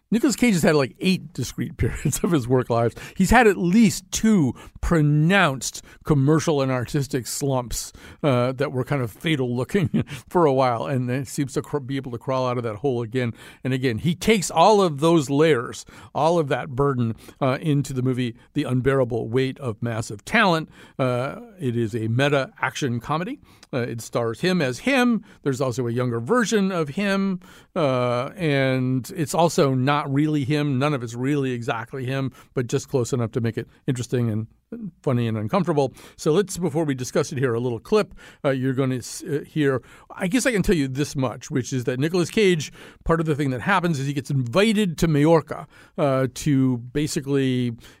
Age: 50-69